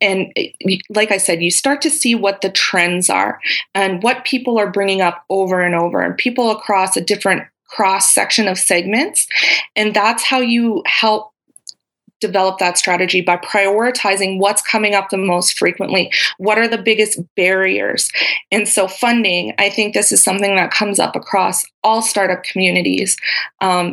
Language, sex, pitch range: English, female, 185-215 Hz